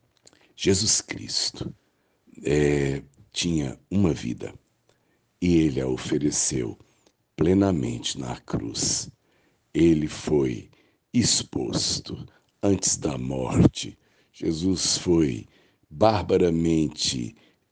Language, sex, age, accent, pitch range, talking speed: Portuguese, male, 60-79, Brazilian, 70-90 Hz, 70 wpm